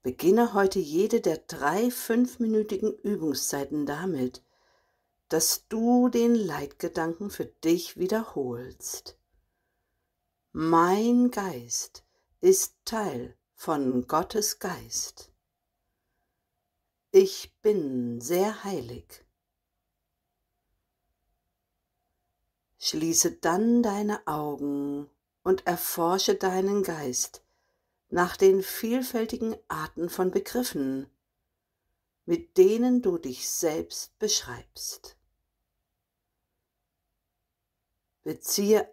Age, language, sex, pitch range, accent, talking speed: 60-79, German, female, 135-220 Hz, German, 70 wpm